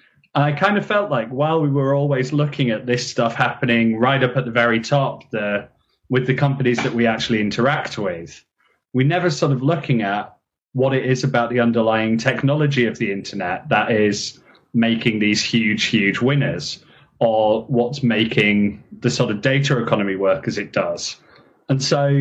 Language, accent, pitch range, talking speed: English, British, 115-140 Hz, 180 wpm